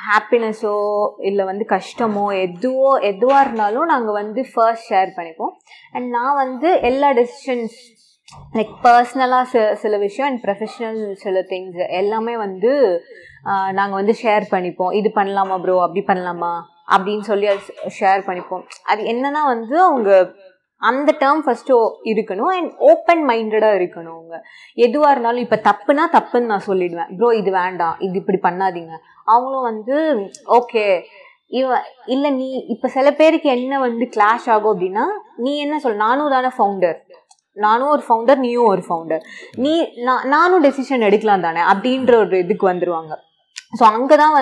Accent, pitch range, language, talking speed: native, 195-260 Hz, Tamil, 140 wpm